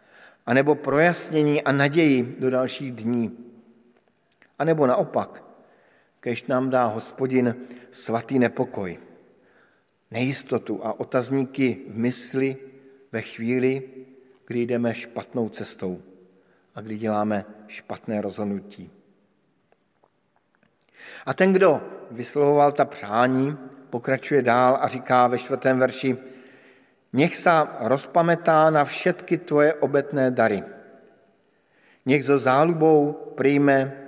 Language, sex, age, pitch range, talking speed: Slovak, male, 50-69, 120-135 Hz, 100 wpm